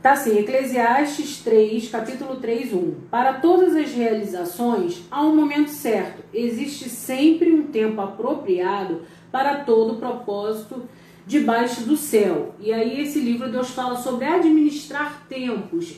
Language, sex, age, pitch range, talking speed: Portuguese, female, 40-59, 205-275 Hz, 135 wpm